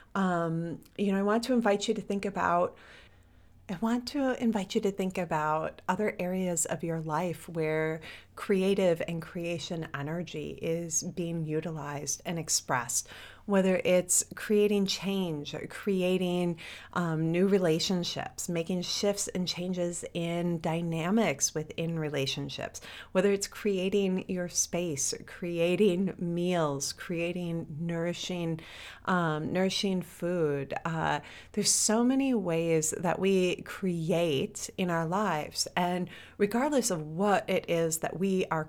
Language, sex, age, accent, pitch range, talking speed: English, female, 30-49, American, 165-205 Hz, 130 wpm